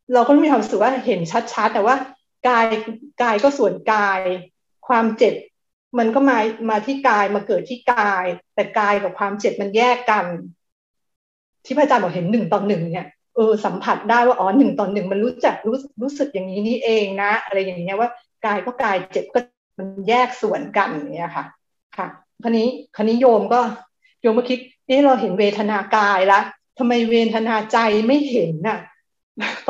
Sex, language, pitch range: female, Thai, 215-265 Hz